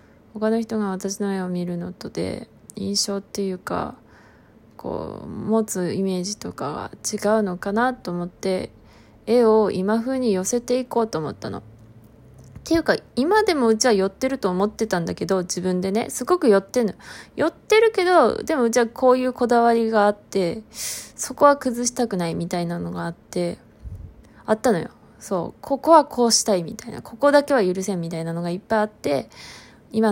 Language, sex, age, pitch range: Japanese, female, 20-39, 185-245 Hz